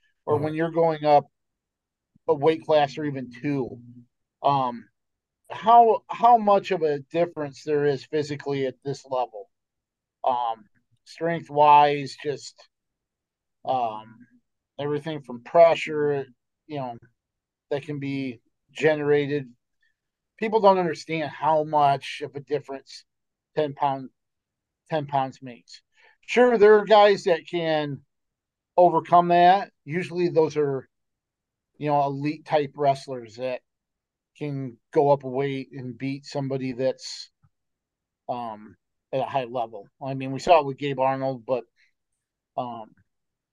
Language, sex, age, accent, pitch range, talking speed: English, male, 40-59, American, 130-160 Hz, 125 wpm